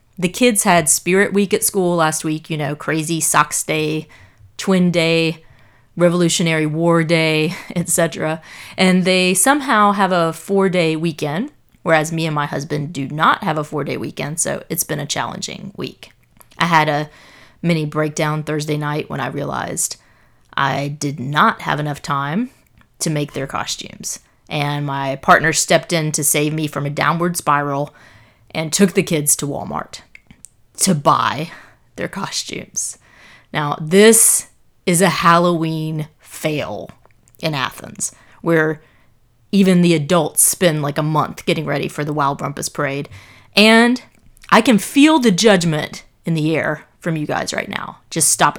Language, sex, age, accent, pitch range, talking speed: English, female, 30-49, American, 150-180 Hz, 155 wpm